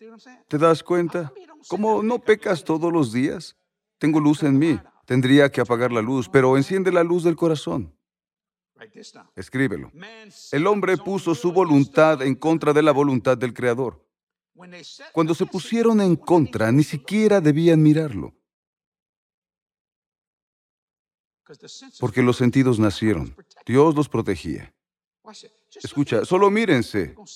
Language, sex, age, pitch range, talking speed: Spanish, male, 40-59, 130-175 Hz, 125 wpm